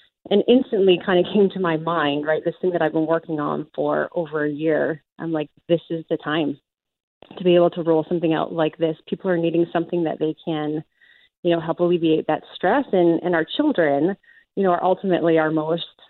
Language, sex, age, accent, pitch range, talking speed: English, female, 30-49, American, 155-175 Hz, 215 wpm